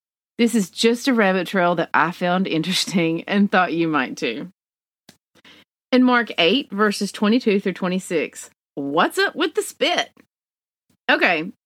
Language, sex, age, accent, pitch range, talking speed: English, female, 40-59, American, 170-240 Hz, 145 wpm